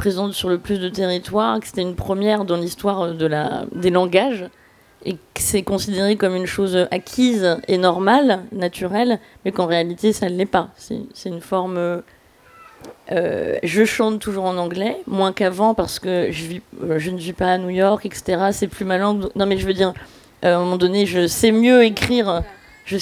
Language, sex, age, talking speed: French, female, 20-39, 200 wpm